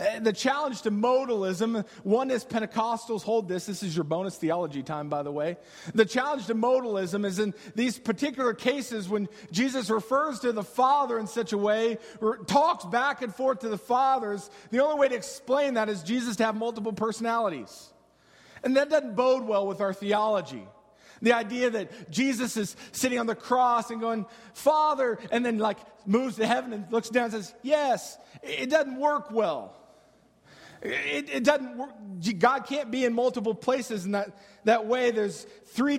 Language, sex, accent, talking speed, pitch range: English, male, American, 180 wpm, 200-250 Hz